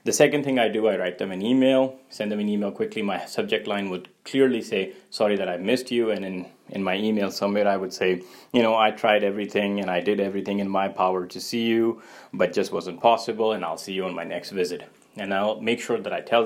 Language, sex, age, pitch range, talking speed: English, male, 20-39, 95-110 Hz, 250 wpm